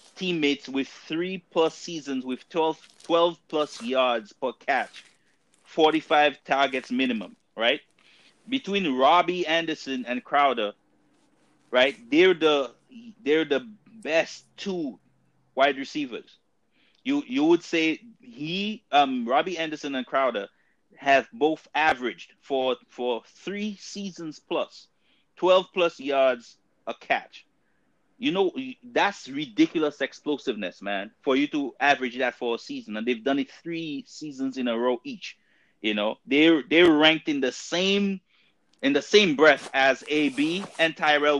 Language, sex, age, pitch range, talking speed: English, male, 30-49, 135-195 Hz, 135 wpm